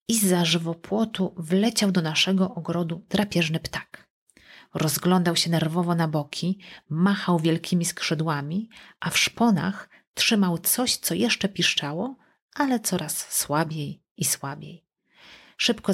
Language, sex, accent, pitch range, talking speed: Polish, female, native, 160-200 Hz, 115 wpm